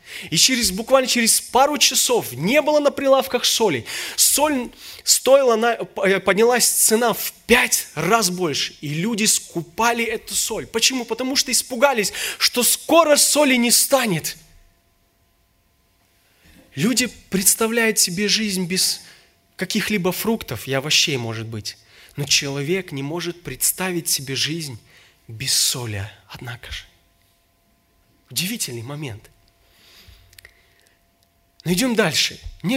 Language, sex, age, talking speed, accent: Russian, male, 20-39, 110 wpm, native